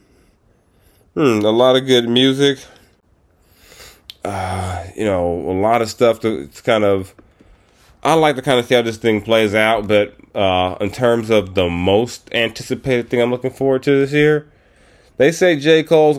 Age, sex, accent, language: 30-49, male, American, English